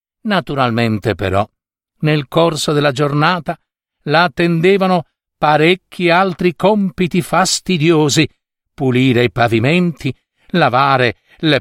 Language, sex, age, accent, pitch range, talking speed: Italian, male, 60-79, native, 130-180 Hz, 90 wpm